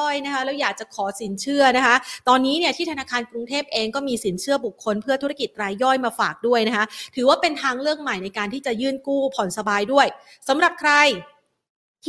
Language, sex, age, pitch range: Thai, female, 30-49, 210-265 Hz